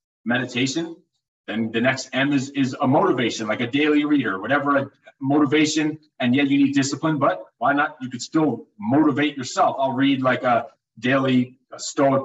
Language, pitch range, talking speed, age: English, 125-150 Hz, 170 wpm, 30-49